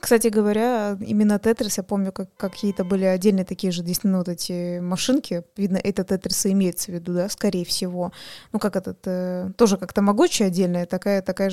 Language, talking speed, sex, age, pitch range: Russian, 185 wpm, female, 20-39, 185-210 Hz